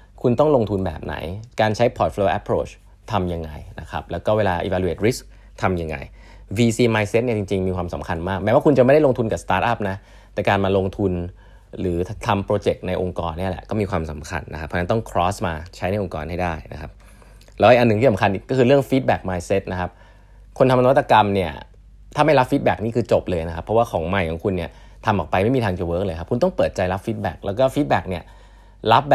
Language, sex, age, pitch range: Thai, male, 20-39, 90-120 Hz